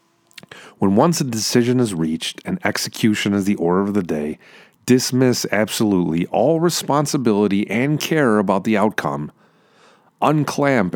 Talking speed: 130 wpm